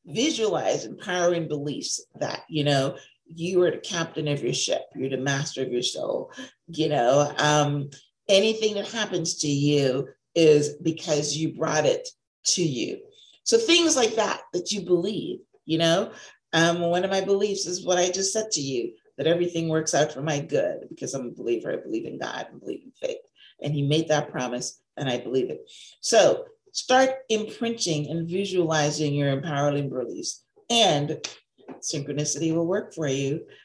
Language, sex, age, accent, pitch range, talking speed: English, female, 40-59, American, 150-210 Hz, 175 wpm